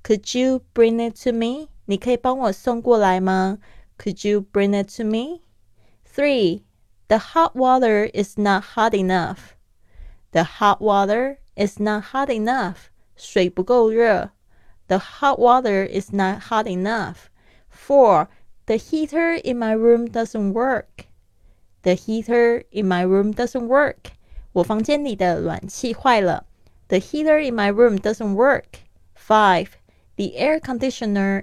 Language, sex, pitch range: Chinese, female, 185-240 Hz